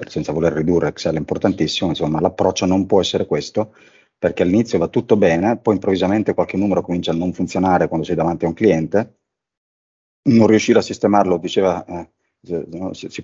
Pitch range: 80-95 Hz